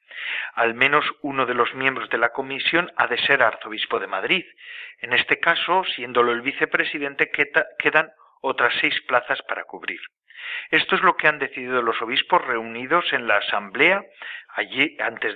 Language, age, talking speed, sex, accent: Spanish, 40-59, 155 wpm, male, Spanish